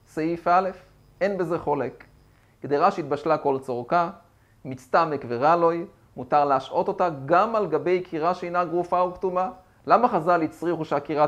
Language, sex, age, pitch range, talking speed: Hebrew, male, 30-49, 130-175 Hz, 140 wpm